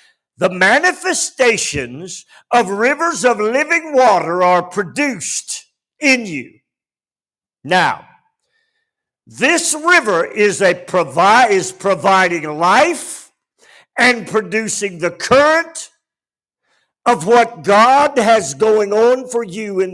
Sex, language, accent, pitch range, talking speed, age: male, English, American, 180-245 Hz, 100 wpm, 50-69